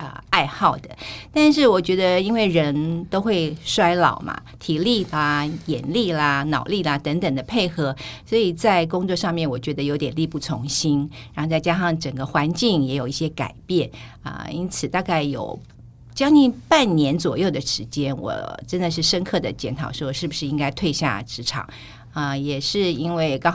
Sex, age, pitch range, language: female, 50-69, 135-180 Hz, Chinese